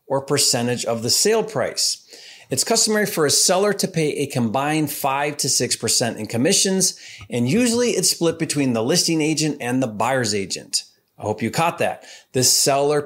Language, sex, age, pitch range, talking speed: English, male, 30-49, 120-160 Hz, 185 wpm